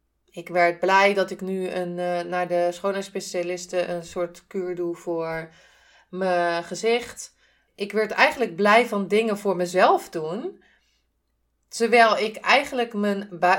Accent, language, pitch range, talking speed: Dutch, Dutch, 175-210 Hz, 140 wpm